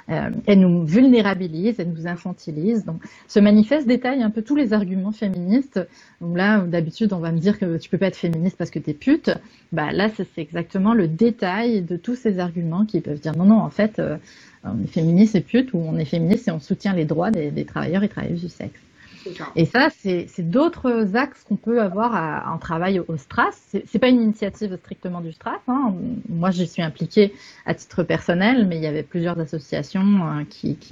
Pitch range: 170-225 Hz